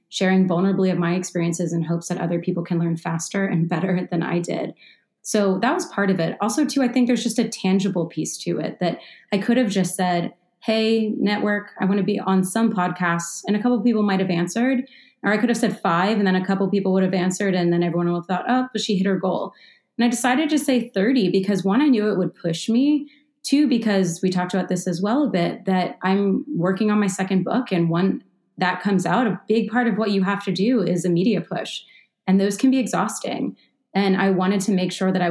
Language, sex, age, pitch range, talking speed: English, female, 30-49, 180-220 Hz, 250 wpm